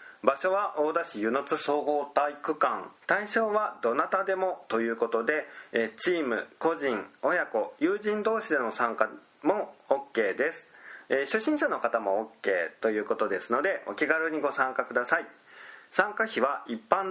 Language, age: Japanese, 40-59